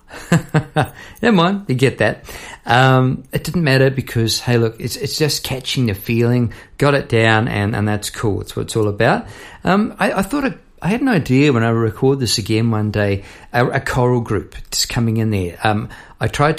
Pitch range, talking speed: 105-145 Hz, 205 wpm